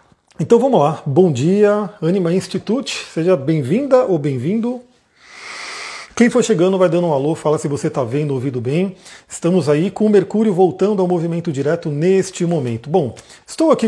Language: Portuguese